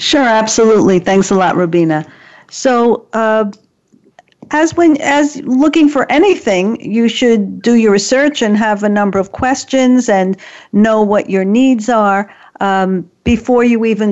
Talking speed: 145 wpm